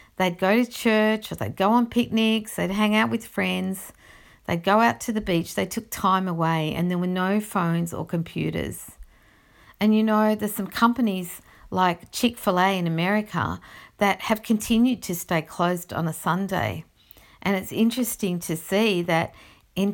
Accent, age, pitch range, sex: Australian, 50-69, 165-205 Hz, female